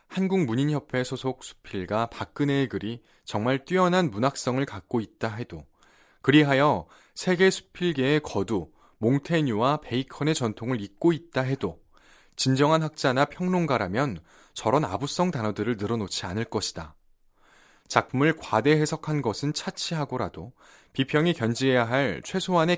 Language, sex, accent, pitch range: Korean, male, native, 110-150 Hz